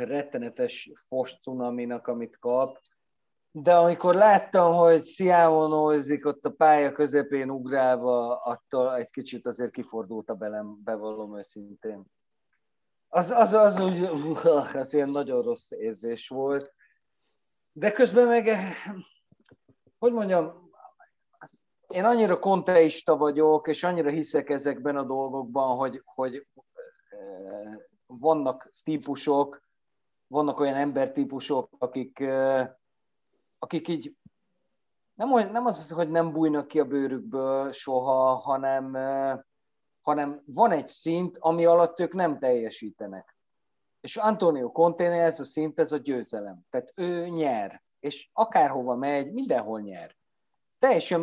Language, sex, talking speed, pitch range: Hungarian, male, 110 wpm, 130-170 Hz